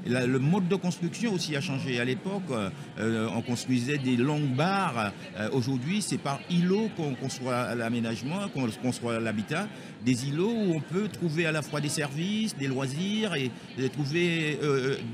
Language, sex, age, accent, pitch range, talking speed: French, male, 50-69, French, 130-180 Hz, 160 wpm